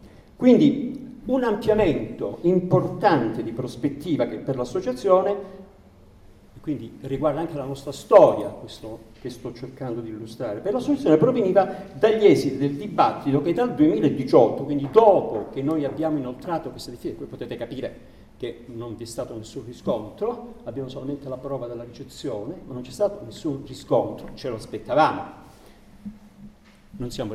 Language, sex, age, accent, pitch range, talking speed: Italian, male, 50-69, native, 120-190 Hz, 145 wpm